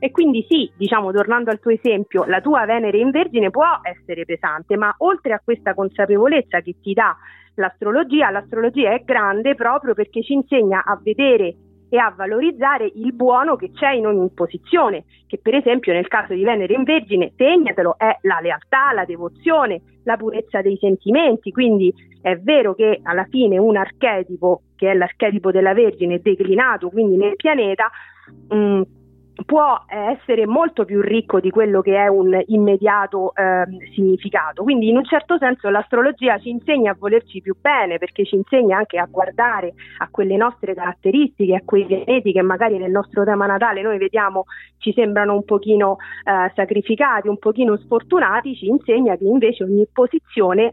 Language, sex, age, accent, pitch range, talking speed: Italian, female, 40-59, native, 195-250 Hz, 170 wpm